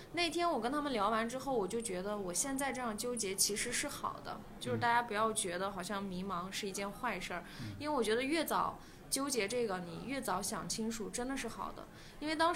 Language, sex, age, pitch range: Chinese, female, 20-39, 195-240 Hz